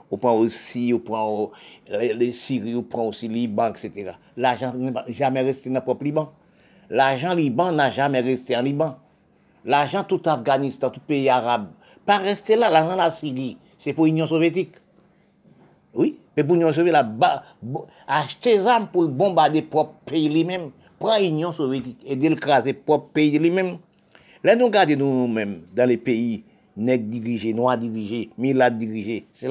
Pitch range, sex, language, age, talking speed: 125-170 Hz, male, French, 50-69, 175 wpm